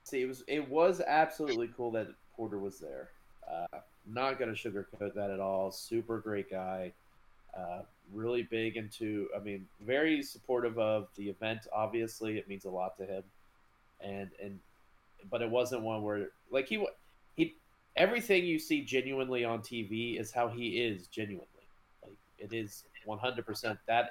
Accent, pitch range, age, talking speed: American, 100-125 Hz, 30-49, 165 wpm